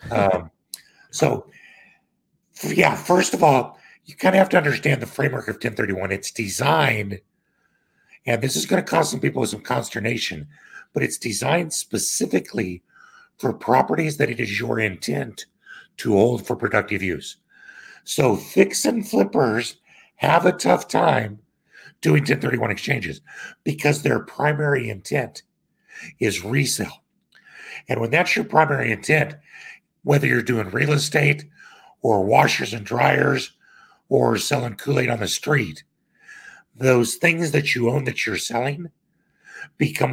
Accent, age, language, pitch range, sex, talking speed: American, 60-79, English, 110-150 Hz, male, 135 wpm